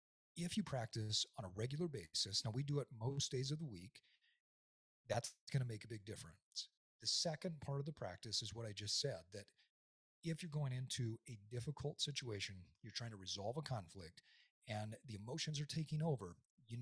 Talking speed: 195 wpm